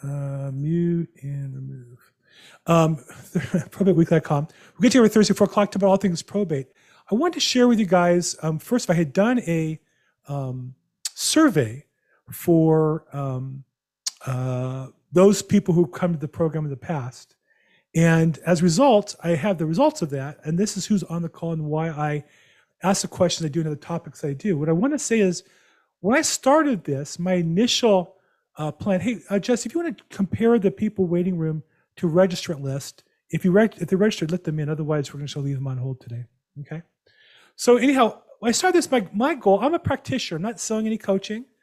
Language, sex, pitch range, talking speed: English, male, 150-195 Hz, 205 wpm